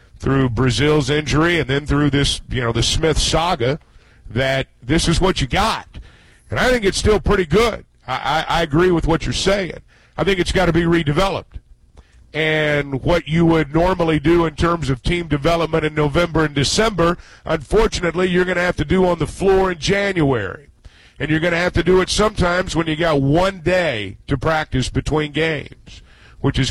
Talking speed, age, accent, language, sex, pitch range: 195 wpm, 50-69, American, English, male, 135-170 Hz